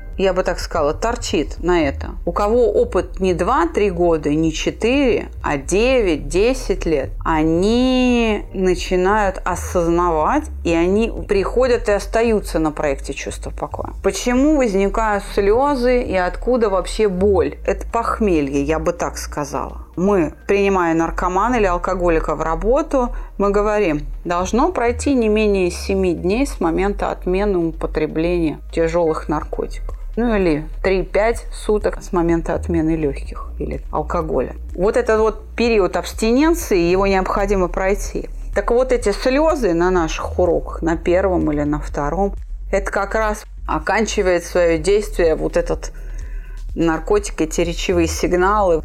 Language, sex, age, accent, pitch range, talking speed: Russian, female, 30-49, native, 165-215 Hz, 130 wpm